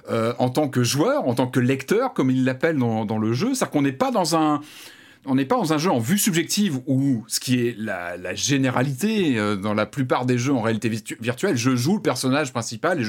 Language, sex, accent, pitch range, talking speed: French, male, French, 125-180 Hz, 230 wpm